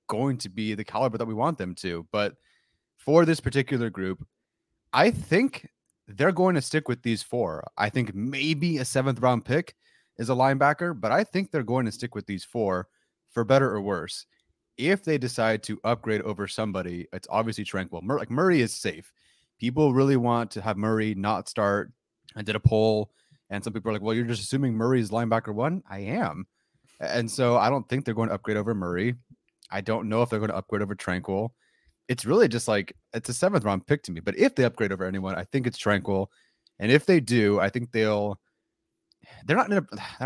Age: 30-49